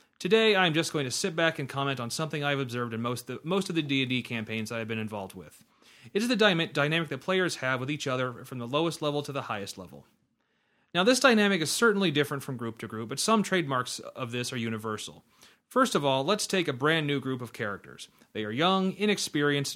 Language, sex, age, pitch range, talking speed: English, male, 30-49, 120-165 Hz, 235 wpm